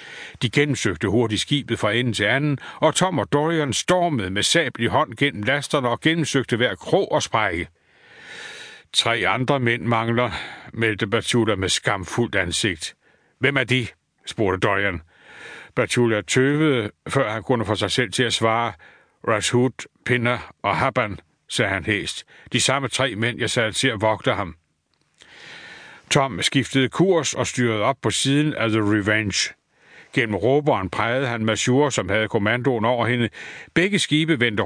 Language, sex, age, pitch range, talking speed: Danish, male, 60-79, 110-140 Hz, 160 wpm